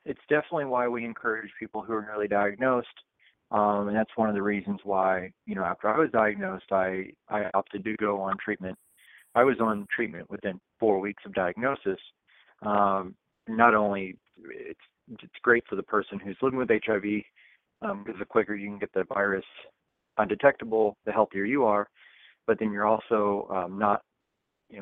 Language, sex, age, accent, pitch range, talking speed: English, male, 30-49, American, 100-115 Hz, 180 wpm